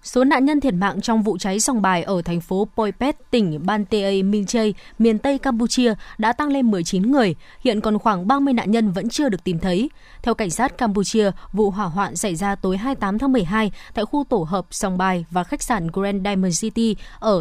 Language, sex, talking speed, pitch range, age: Vietnamese, female, 210 wpm, 190-240 Hz, 20-39